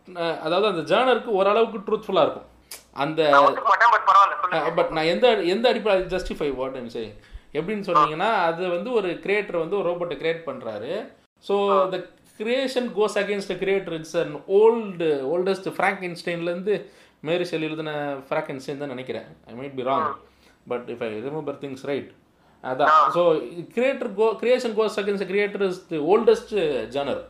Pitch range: 160-215 Hz